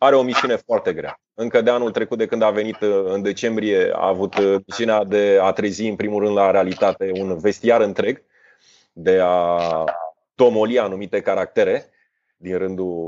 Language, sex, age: Romanian, male, 30-49